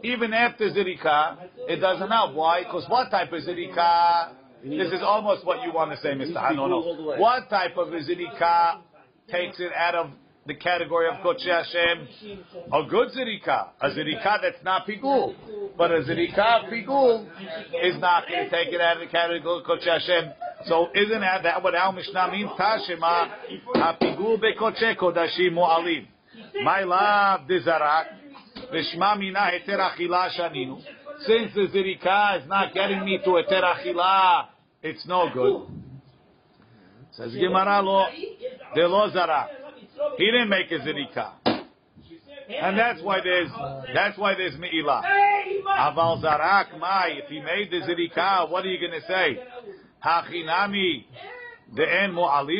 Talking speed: 125 wpm